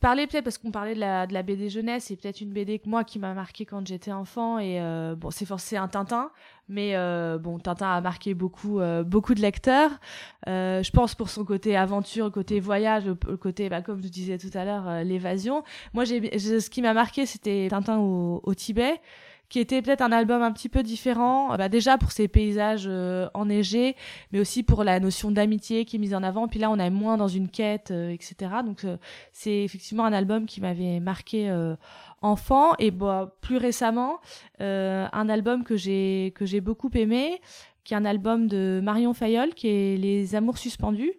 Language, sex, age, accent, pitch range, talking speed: French, female, 20-39, French, 190-235 Hz, 215 wpm